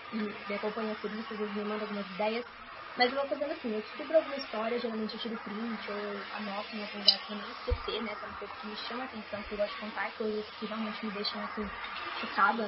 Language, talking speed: Portuguese, 235 wpm